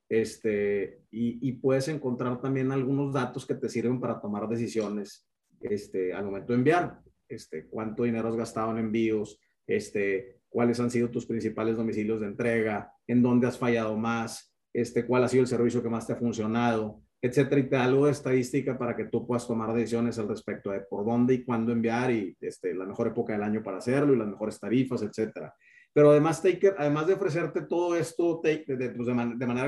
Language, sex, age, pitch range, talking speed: Spanish, male, 30-49, 115-135 Hz, 210 wpm